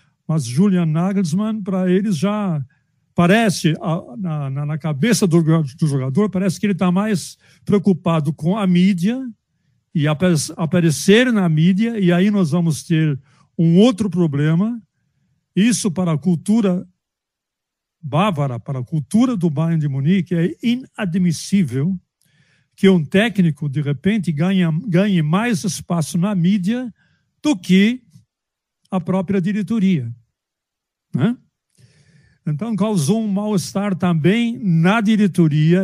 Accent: Brazilian